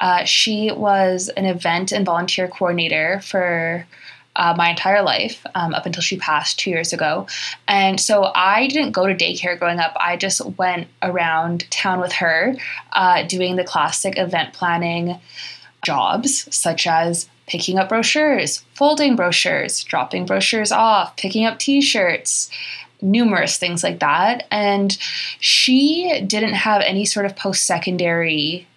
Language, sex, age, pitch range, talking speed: English, female, 20-39, 175-205 Hz, 145 wpm